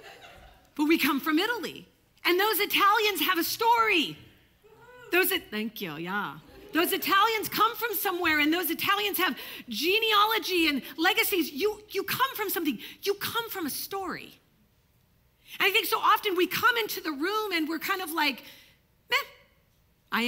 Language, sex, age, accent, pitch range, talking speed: English, female, 40-59, American, 265-360 Hz, 160 wpm